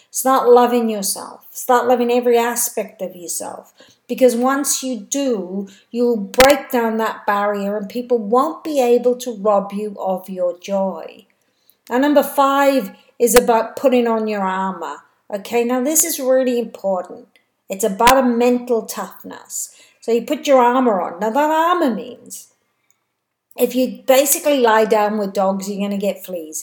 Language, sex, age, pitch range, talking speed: English, female, 50-69, 205-260 Hz, 160 wpm